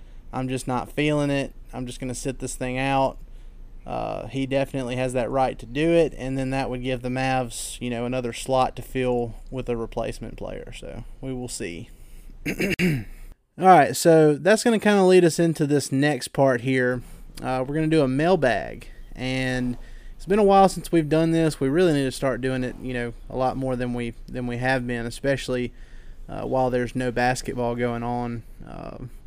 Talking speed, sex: 205 wpm, male